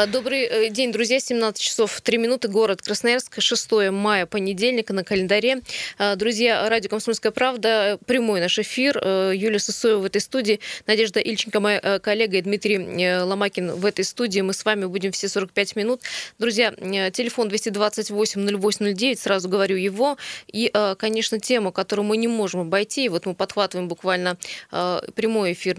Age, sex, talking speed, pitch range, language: 20-39, female, 150 wpm, 190-225 Hz, Russian